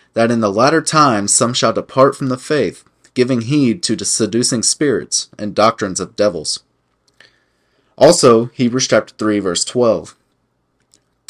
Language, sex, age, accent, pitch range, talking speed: English, male, 20-39, American, 105-130 Hz, 135 wpm